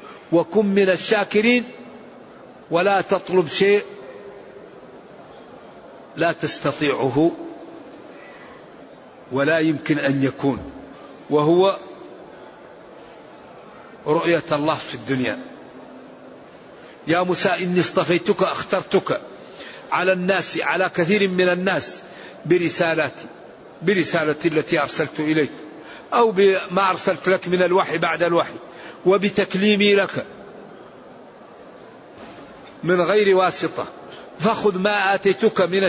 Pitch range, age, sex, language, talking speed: 170-200 Hz, 60-79, male, Arabic, 85 wpm